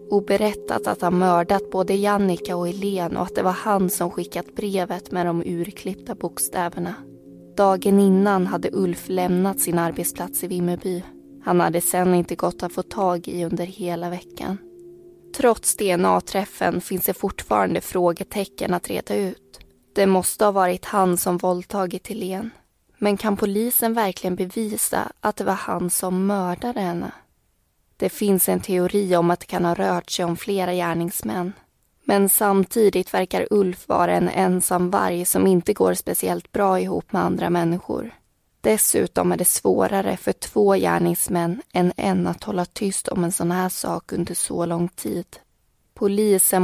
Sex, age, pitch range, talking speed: female, 20-39, 175-200 Hz, 160 wpm